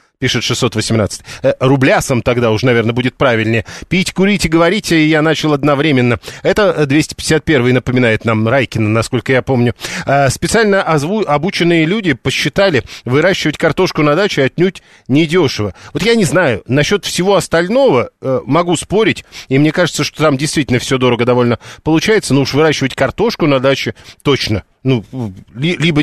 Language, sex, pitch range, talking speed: Russian, male, 125-165 Hz, 140 wpm